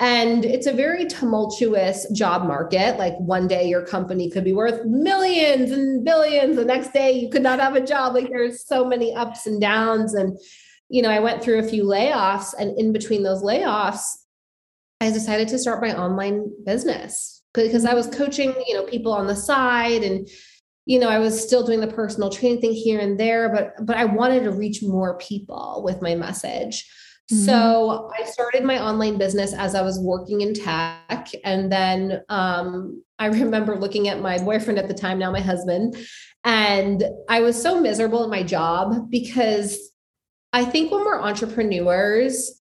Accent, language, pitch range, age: American, English, 195-245 Hz, 30-49